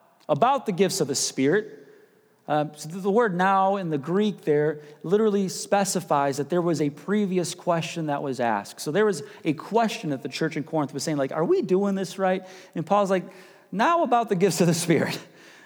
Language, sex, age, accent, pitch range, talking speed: English, male, 30-49, American, 150-200 Hz, 205 wpm